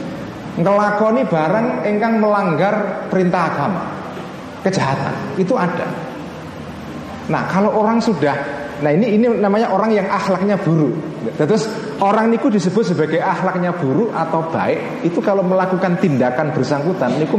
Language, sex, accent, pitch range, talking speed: Indonesian, male, native, 155-205 Hz, 125 wpm